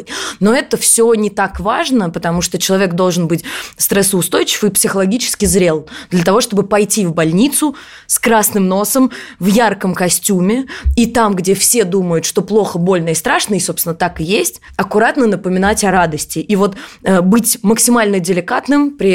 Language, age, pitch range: Russian, 20-39, 180-225 Hz